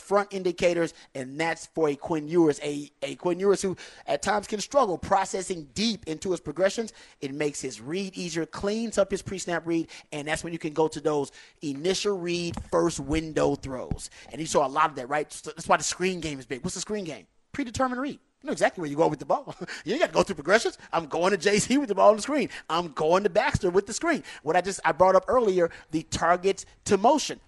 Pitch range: 155-205 Hz